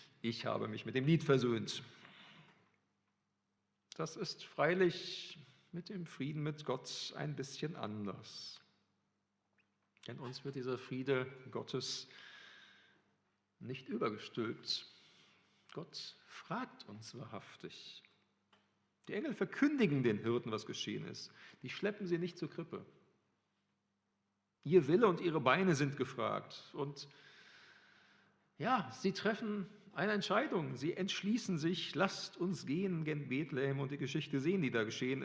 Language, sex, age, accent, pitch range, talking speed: German, male, 40-59, German, 115-165 Hz, 125 wpm